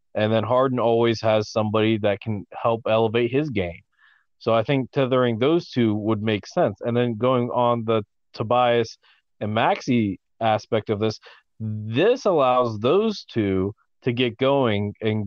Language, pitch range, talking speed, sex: English, 110-125 Hz, 155 wpm, male